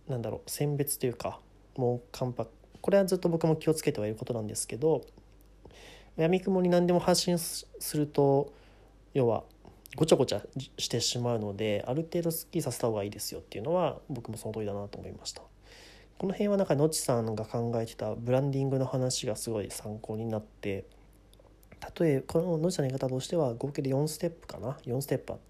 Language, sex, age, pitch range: Japanese, male, 30-49, 110-160 Hz